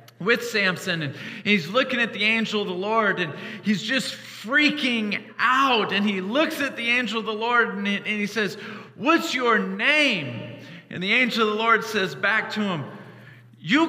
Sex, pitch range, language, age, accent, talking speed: male, 165-235 Hz, English, 40-59, American, 180 wpm